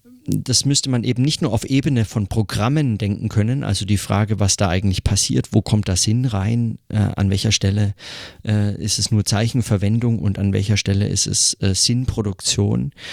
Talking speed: 185 wpm